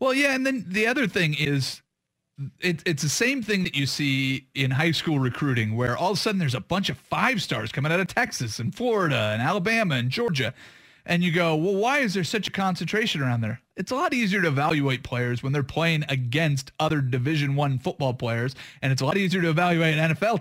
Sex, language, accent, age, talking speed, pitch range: male, English, American, 30-49, 230 wpm, 130-175 Hz